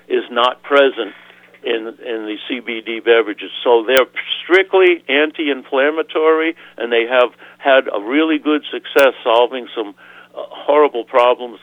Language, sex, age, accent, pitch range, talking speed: English, male, 60-79, American, 115-145 Hz, 130 wpm